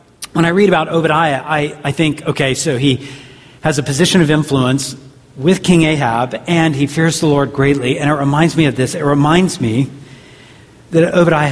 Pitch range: 130-165 Hz